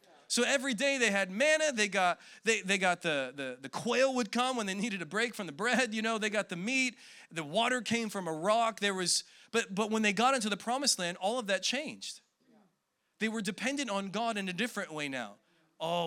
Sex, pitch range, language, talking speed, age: male, 185-255 Hz, English, 235 wpm, 30-49